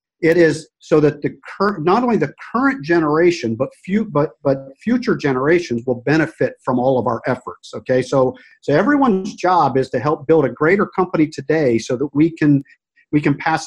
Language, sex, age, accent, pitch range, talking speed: English, male, 50-69, American, 130-170 Hz, 195 wpm